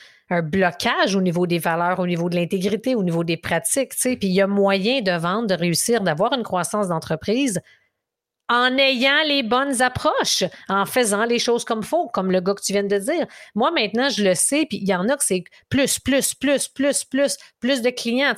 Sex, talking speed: female, 220 wpm